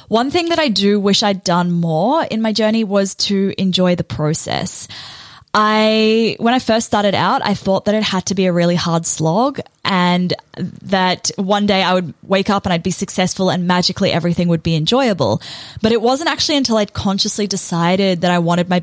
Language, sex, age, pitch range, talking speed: English, female, 10-29, 180-220 Hz, 205 wpm